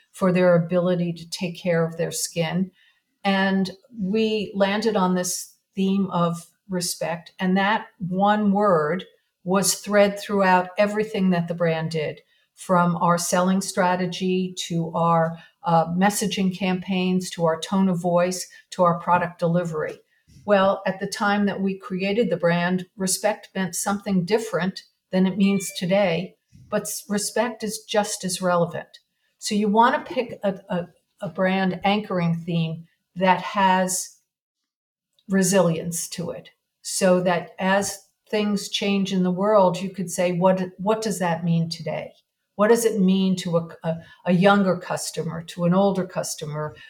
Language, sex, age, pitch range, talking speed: English, female, 50-69, 175-205 Hz, 150 wpm